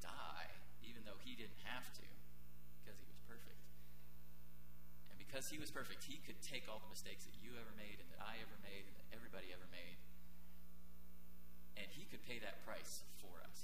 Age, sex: 30-49, male